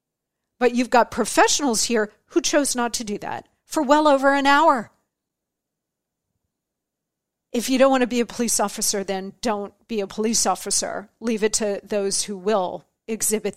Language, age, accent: English, 40-59, American